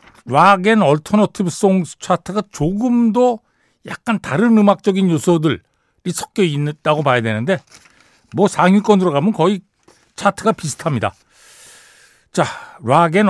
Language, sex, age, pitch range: Korean, male, 60-79, 130-195 Hz